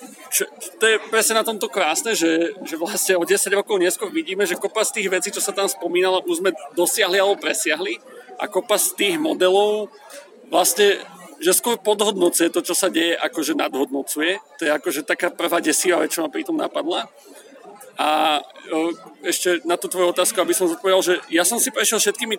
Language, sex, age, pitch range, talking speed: Slovak, male, 40-59, 175-210 Hz, 190 wpm